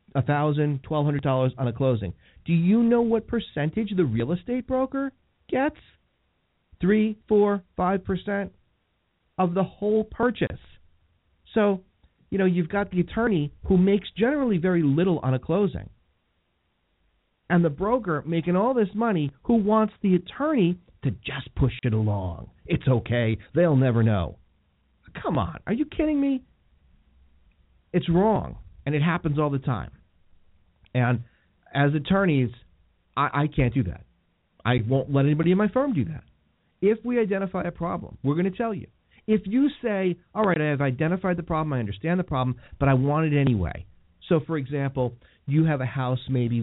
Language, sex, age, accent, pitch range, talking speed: English, male, 40-59, American, 120-190 Hz, 160 wpm